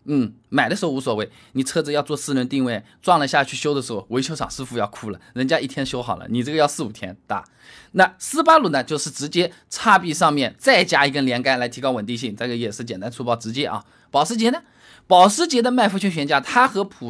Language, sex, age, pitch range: Chinese, male, 20-39, 130-215 Hz